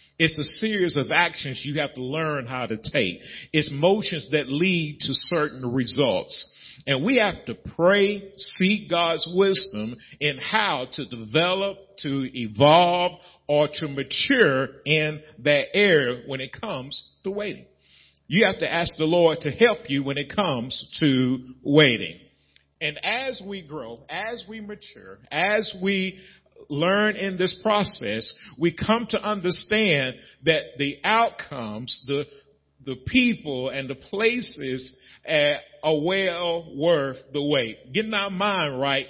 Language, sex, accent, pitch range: English, male, American, 135-190 Hz